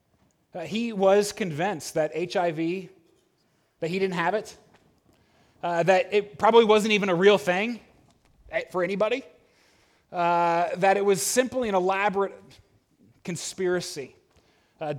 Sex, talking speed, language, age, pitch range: male, 125 wpm, English, 30-49, 145-190 Hz